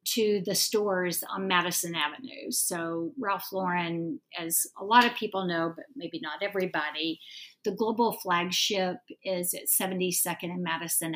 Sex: female